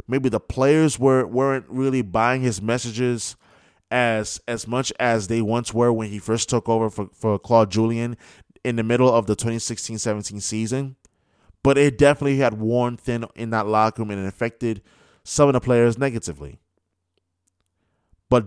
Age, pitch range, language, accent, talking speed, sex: 20-39, 100-135 Hz, English, American, 165 wpm, male